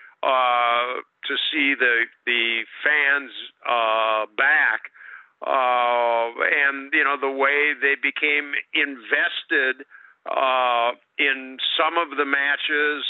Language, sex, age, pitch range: English, male, 50-69, 130-145 Hz